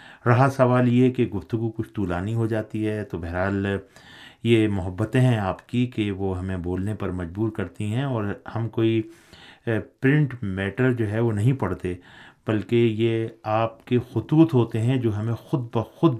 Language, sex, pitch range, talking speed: Urdu, male, 95-115 Hz, 170 wpm